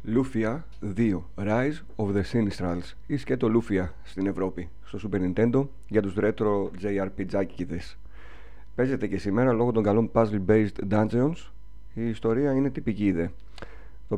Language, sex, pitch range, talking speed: Greek, male, 95-120 Hz, 145 wpm